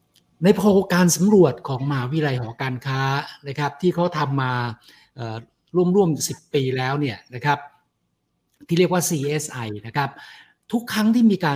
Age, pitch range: 60-79, 130-165 Hz